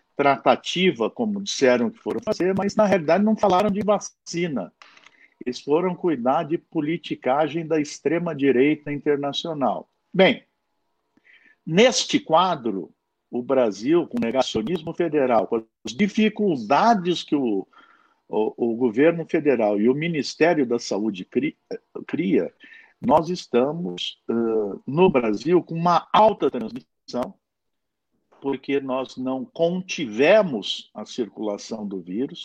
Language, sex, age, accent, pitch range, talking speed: Portuguese, male, 60-79, Brazilian, 125-190 Hz, 115 wpm